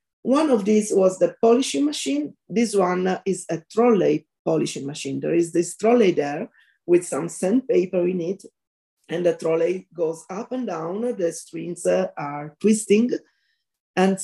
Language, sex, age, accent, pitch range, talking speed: English, female, 40-59, Italian, 160-215 Hz, 155 wpm